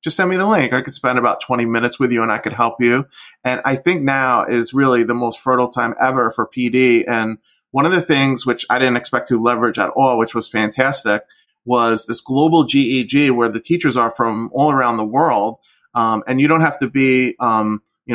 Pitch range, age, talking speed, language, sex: 120-150 Hz, 30-49, 230 wpm, English, male